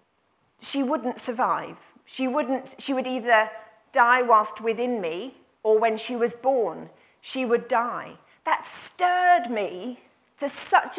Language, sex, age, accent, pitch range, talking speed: English, female, 40-59, British, 220-285 Hz, 135 wpm